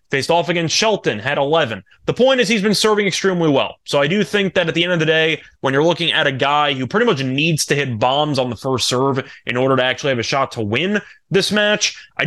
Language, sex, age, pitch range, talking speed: English, male, 20-39, 135-170 Hz, 265 wpm